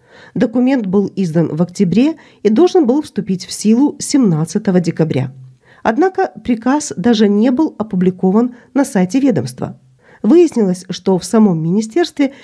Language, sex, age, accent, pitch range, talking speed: Ukrainian, female, 40-59, native, 170-250 Hz, 130 wpm